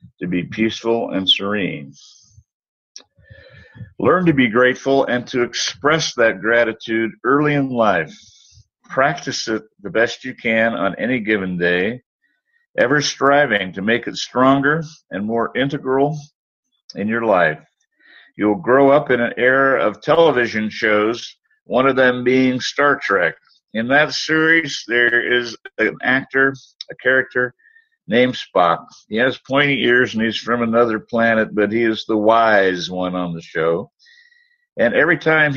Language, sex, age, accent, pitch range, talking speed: English, male, 50-69, American, 110-140 Hz, 145 wpm